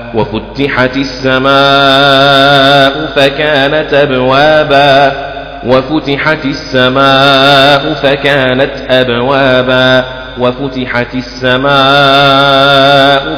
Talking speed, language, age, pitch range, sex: 45 wpm, Arabic, 30-49, 120-140 Hz, male